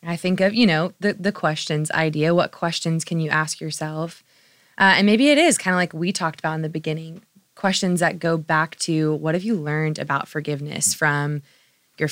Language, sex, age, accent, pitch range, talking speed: English, female, 20-39, American, 150-175 Hz, 210 wpm